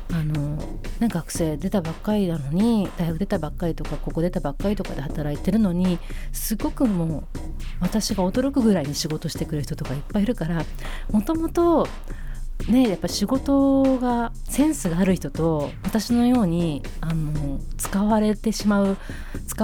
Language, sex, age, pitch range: Japanese, female, 40-59, 150-205 Hz